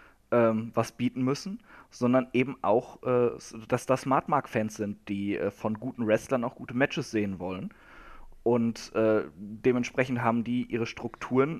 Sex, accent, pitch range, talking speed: male, German, 115-135 Hz, 130 wpm